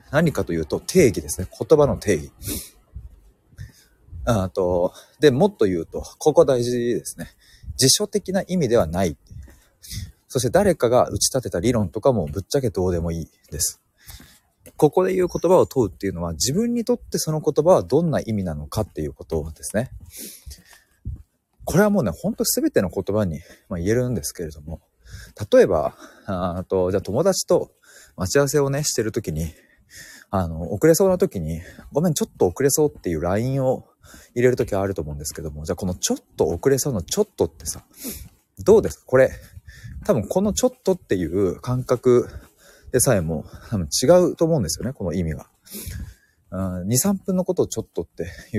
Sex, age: male, 30-49